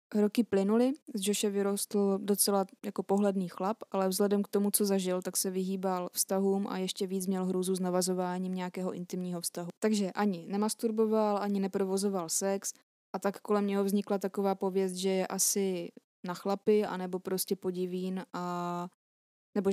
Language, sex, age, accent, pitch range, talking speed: Czech, female, 20-39, native, 185-210 Hz, 160 wpm